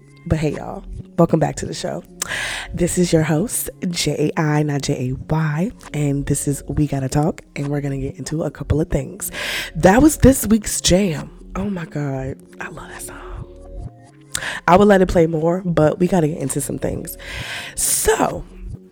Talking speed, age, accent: 180 wpm, 20-39, American